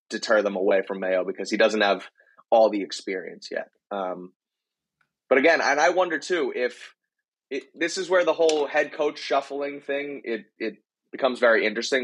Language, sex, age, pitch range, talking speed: English, male, 20-39, 105-140 Hz, 180 wpm